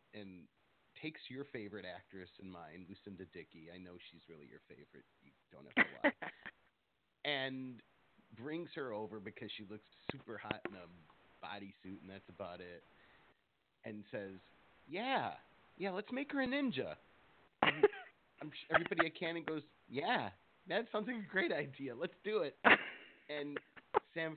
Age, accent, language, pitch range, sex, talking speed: 30-49, American, English, 100-140 Hz, male, 150 wpm